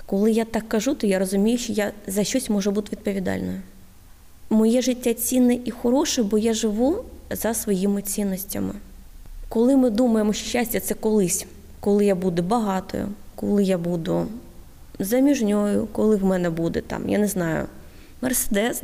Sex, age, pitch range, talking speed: female, 20-39, 185-235 Hz, 160 wpm